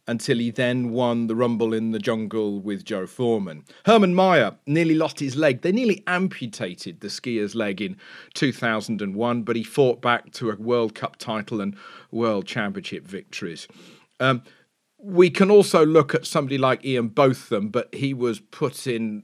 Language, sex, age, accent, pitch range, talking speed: English, male, 40-59, British, 105-145 Hz, 170 wpm